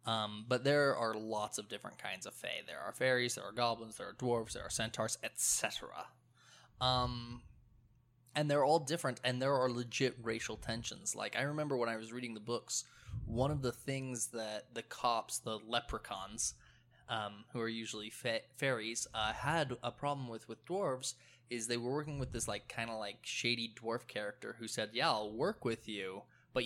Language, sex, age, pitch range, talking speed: English, male, 20-39, 110-125 Hz, 195 wpm